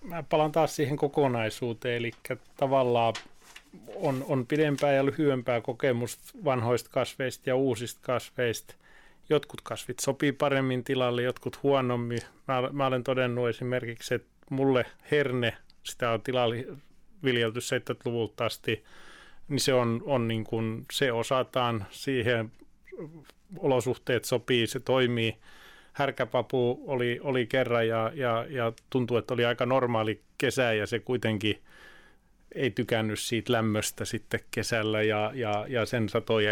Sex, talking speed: male, 130 wpm